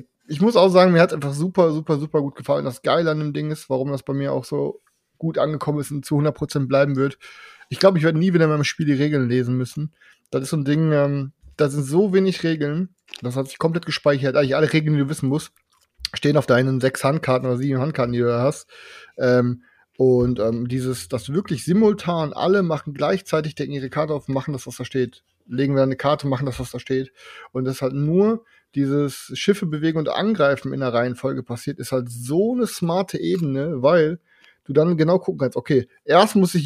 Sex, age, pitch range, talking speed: male, 30-49, 130-165 Hz, 230 wpm